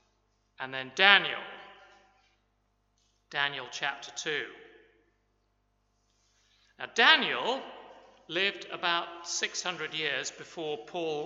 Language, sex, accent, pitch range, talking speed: English, male, British, 155-225 Hz, 75 wpm